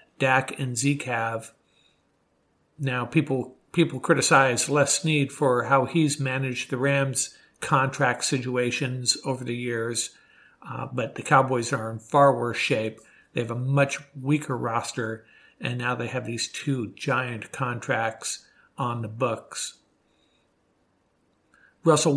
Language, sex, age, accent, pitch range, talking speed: English, male, 50-69, American, 120-145 Hz, 130 wpm